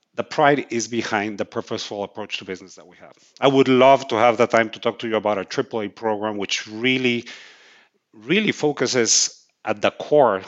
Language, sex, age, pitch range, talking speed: English, male, 50-69, 115-150 Hz, 195 wpm